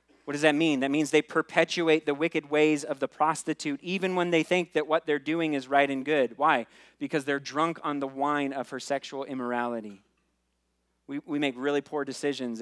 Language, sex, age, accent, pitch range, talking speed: English, male, 30-49, American, 125-170 Hz, 205 wpm